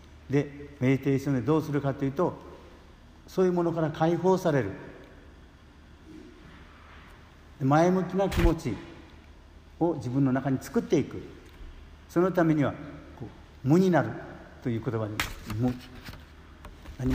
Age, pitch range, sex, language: 60-79, 90-145 Hz, male, Japanese